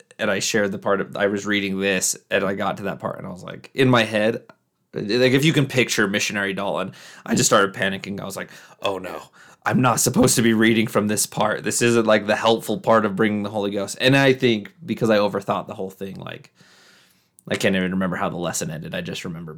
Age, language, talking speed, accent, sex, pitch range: 20-39, English, 245 wpm, American, male, 105-120 Hz